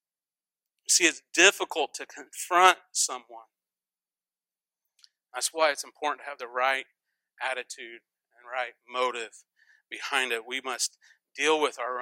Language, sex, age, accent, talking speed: English, male, 40-59, American, 125 wpm